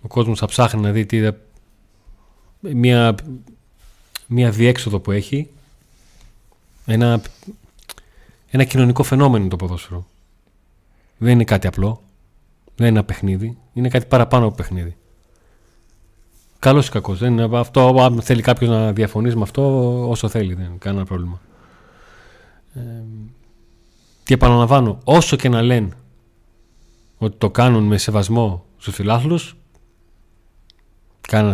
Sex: male